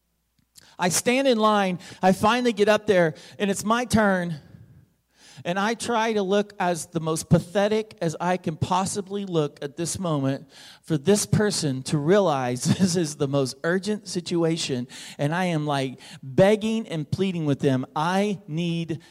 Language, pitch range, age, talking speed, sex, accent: English, 150-220 Hz, 40-59, 165 wpm, male, American